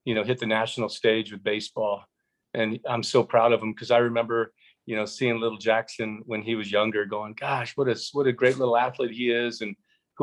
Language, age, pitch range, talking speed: English, 40-59, 110-125 Hz, 230 wpm